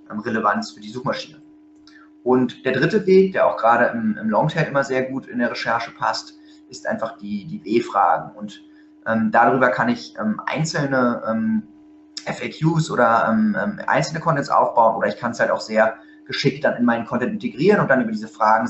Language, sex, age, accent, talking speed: German, male, 30-49, German, 185 wpm